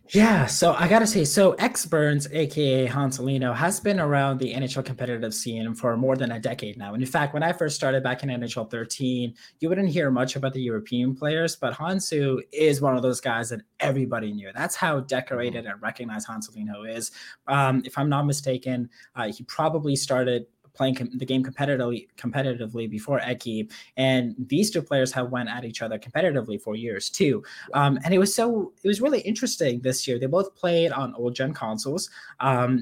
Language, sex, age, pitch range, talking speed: English, male, 20-39, 115-150 Hz, 190 wpm